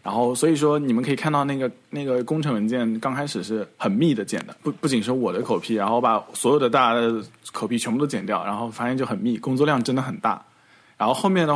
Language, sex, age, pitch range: Chinese, male, 20-39, 115-150 Hz